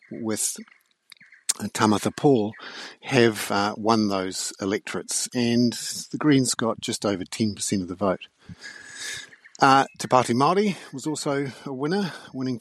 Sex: male